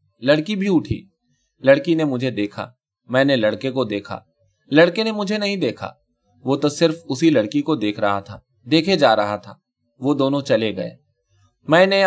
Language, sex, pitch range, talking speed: Urdu, male, 105-160 Hz, 175 wpm